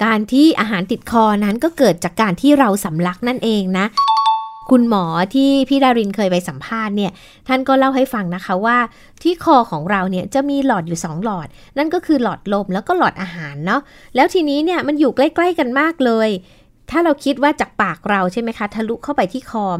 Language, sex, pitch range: Thai, female, 195-275 Hz